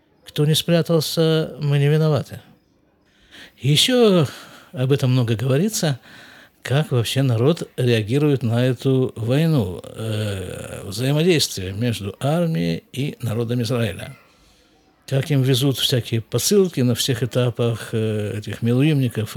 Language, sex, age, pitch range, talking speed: Russian, male, 50-69, 120-155 Hz, 110 wpm